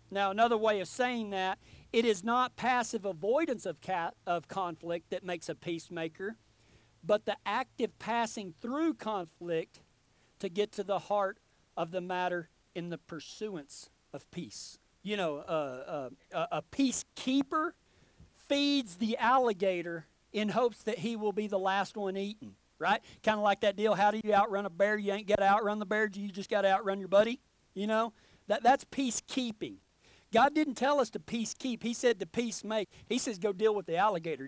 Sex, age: male, 50-69